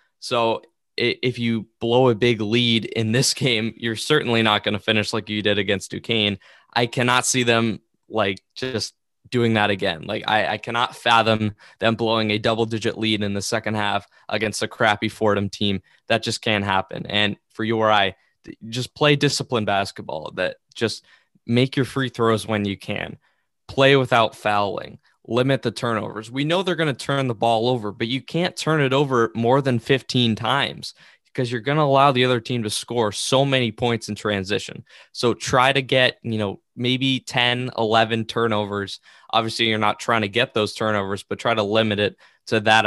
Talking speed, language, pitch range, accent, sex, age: 190 wpm, English, 105-125 Hz, American, male, 10-29